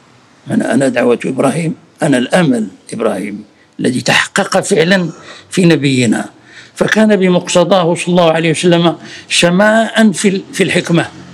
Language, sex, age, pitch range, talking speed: Arabic, male, 60-79, 135-185 Hz, 115 wpm